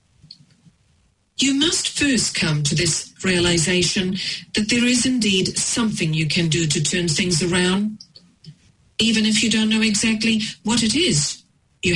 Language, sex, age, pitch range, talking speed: English, female, 40-59, 145-195 Hz, 145 wpm